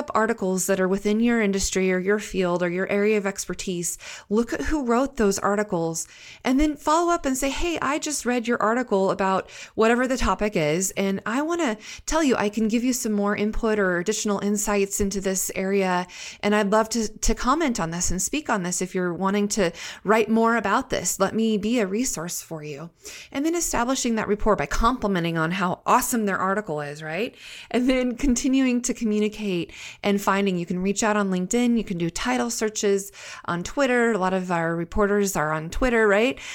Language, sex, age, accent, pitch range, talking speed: English, female, 30-49, American, 185-235 Hz, 205 wpm